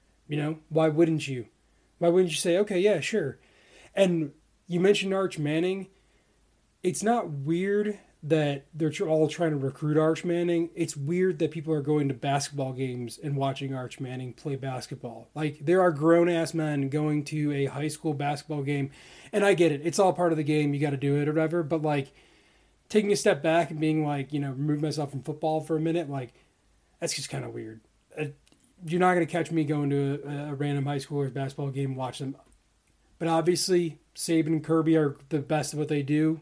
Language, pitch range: English, 140-165 Hz